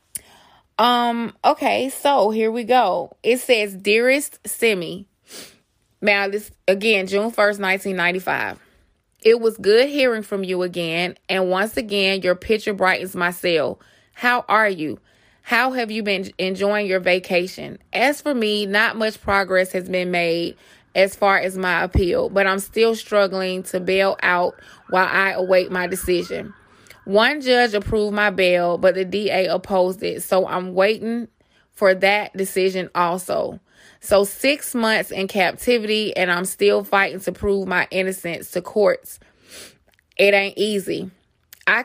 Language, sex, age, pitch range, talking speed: English, female, 20-39, 185-215 Hz, 150 wpm